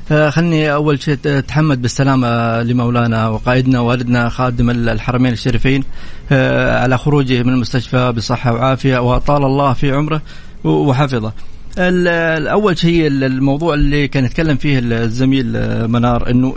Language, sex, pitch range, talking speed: Arabic, male, 125-165 Hz, 115 wpm